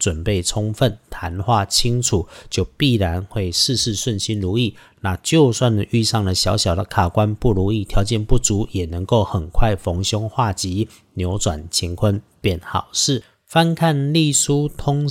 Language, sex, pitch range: Chinese, male, 95-125 Hz